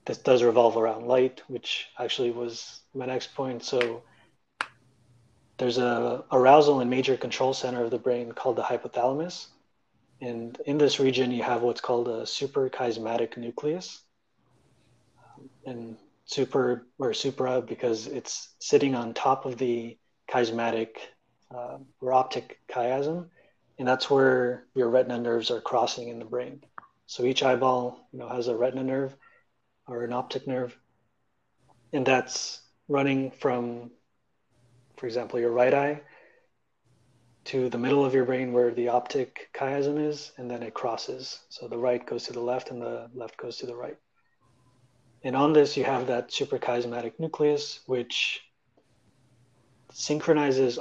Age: 30-49